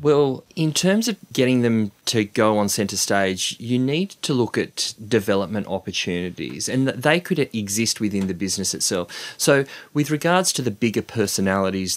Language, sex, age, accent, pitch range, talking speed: English, male, 30-49, Australian, 95-120 Hz, 170 wpm